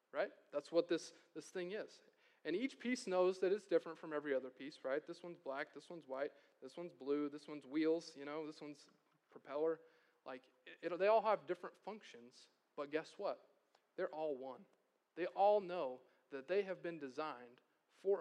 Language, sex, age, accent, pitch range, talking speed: English, male, 30-49, American, 135-185 Hz, 195 wpm